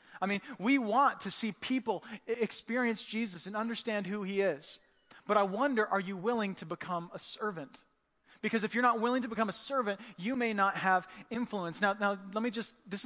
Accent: American